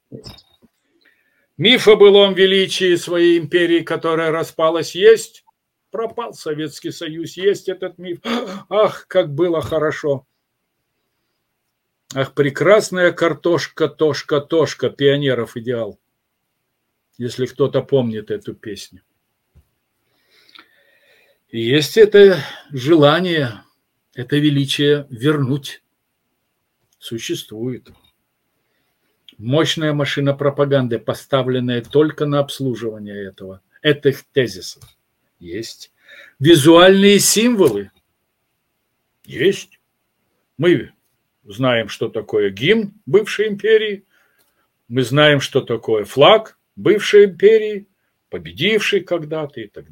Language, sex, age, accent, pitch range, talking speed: Russian, male, 50-69, native, 135-190 Hz, 85 wpm